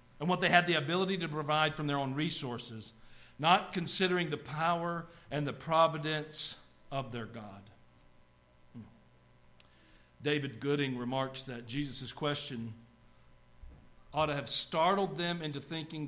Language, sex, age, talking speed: English, male, 50-69, 130 wpm